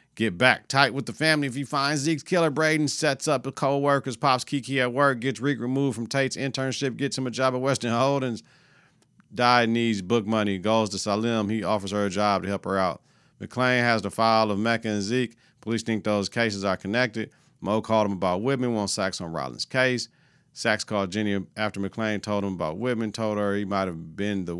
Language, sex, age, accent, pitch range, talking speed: English, male, 50-69, American, 95-130 Hz, 215 wpm